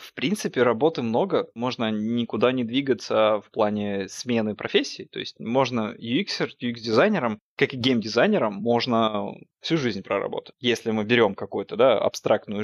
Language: Russian